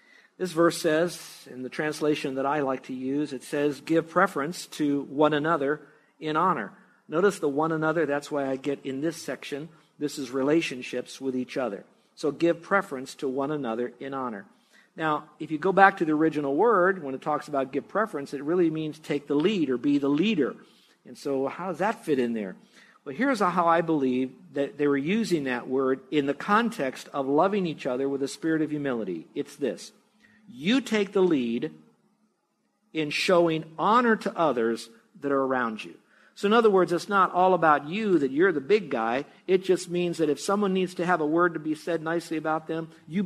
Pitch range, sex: 140-185 Hz, male